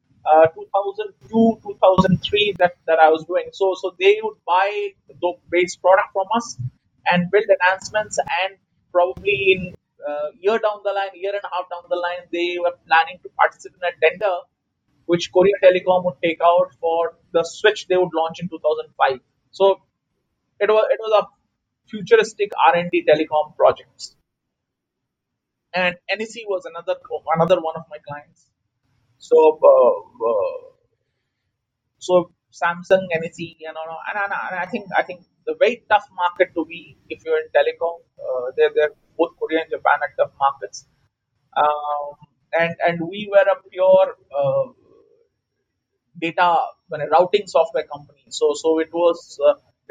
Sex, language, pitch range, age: male, English, 160-205 Hz, 30-49